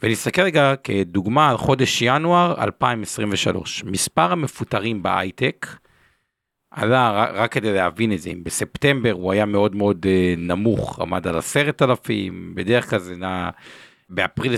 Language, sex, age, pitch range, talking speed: Hebrew, male, 50-69, 100-140 Hz, 130 wpm